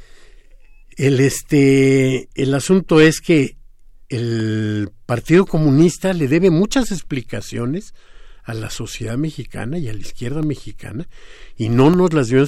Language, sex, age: Spanish, male, 50-69